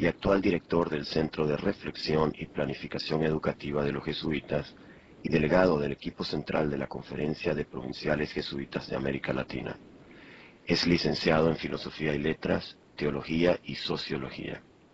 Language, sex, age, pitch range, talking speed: English, male, 40-59, 70-85 Hz, 145 wpm